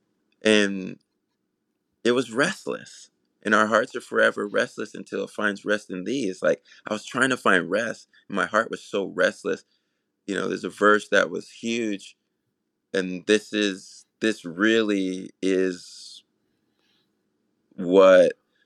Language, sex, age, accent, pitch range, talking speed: English, male, 20-39, American, 90-105 Hz, 140 wpm